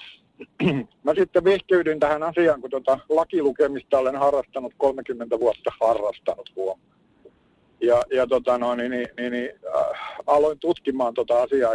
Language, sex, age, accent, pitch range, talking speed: Finnish, male, 60-79, native, 125-175 Hz, 140 wpm